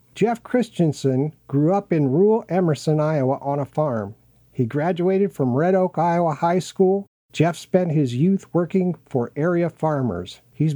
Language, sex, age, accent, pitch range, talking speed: English, male, 50-69, American, 135-180 Hz, 155 wpm